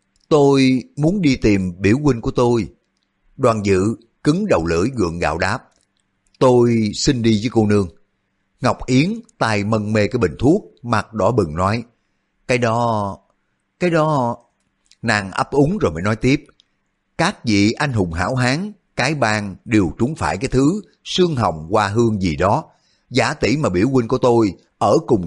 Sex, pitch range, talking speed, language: male, 100-135 Hz, 175 wpm, Vietnamese